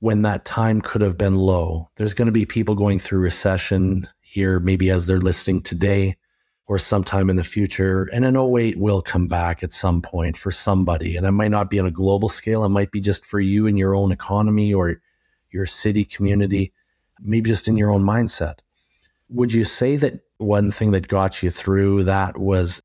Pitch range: 90-105 Hz